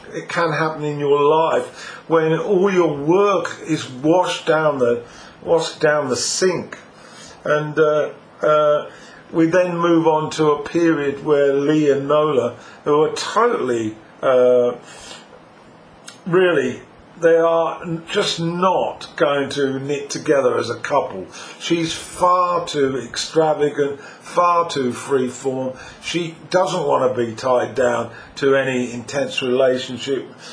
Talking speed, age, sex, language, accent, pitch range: 130 wpm, 50-69, male, English, British, 140-165 Hz